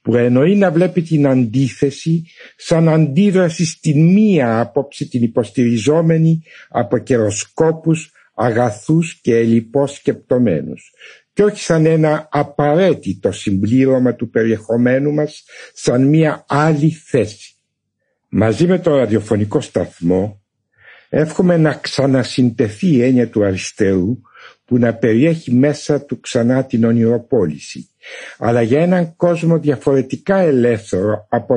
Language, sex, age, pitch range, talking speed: Greek, male, 60-79, 115-155 Hz, 110 wpm